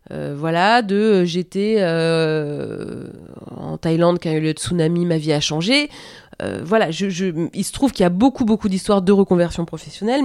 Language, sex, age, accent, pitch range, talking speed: French, female, 30-49, French, 165-240 Hz, 205 wpm